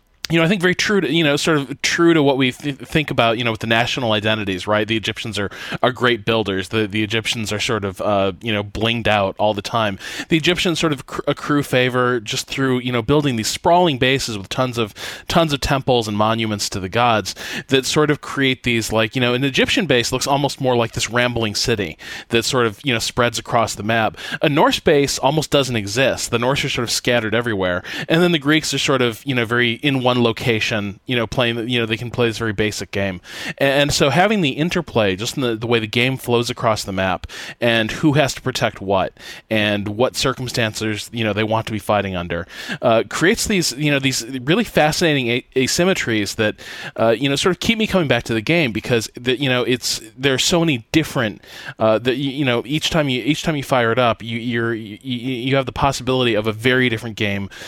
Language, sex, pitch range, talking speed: English, male, 110-140 Hz, 235 wpm